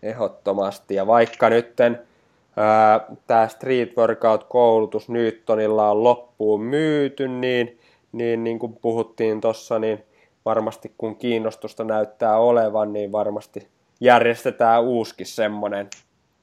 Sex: male